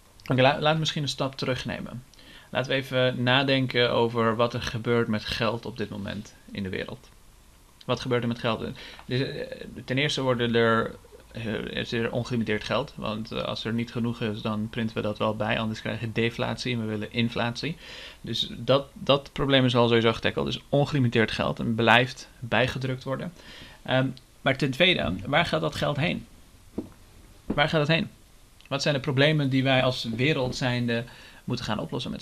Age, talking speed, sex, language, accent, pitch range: 40-59, 180 wpm, male, Dutch, Dutch, 115-130 Hz